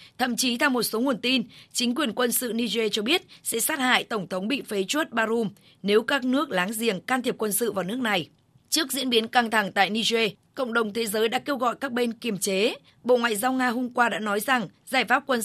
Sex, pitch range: female, 195-240 Hz